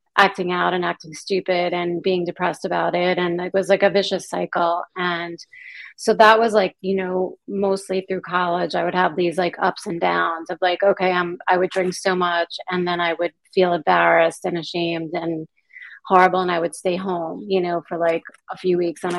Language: English